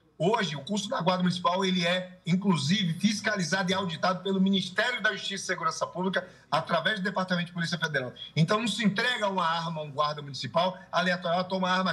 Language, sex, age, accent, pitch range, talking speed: Portuguese, male, 40-59, Brazilian, 160-195 Hz, 190 wpm